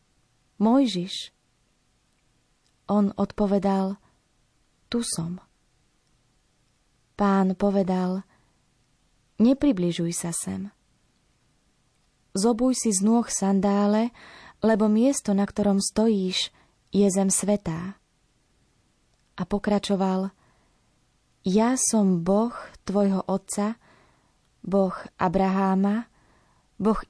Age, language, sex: 20-39, Slovak, female